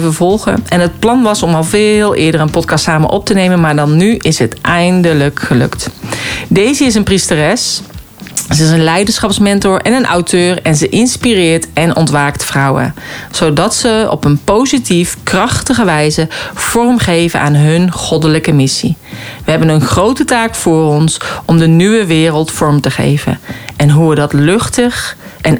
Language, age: Dutch, 40-59